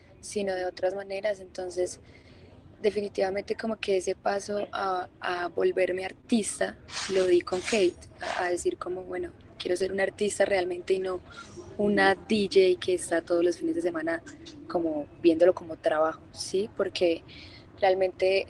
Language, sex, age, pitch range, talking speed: Spanish, female, 20-39, 175-215 Hz, 150 wpm